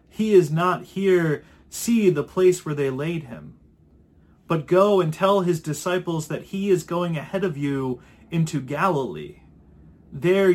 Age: 30-49